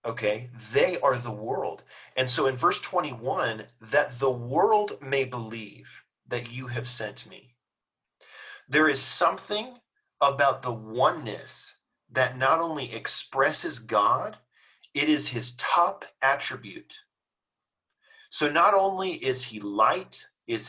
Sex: male